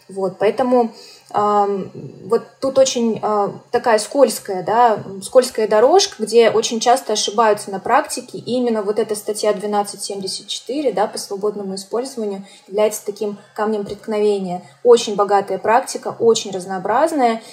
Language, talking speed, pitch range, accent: Russian, 125 wpm, 205-235 Hz, native